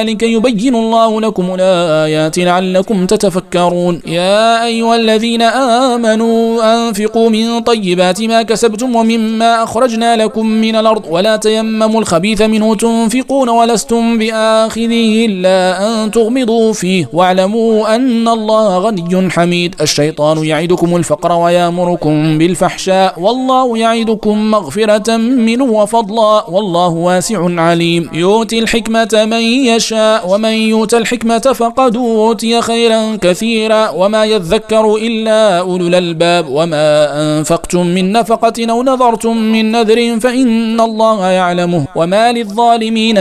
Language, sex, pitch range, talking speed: Arabic, male, 185-230 Hz, 110 wpm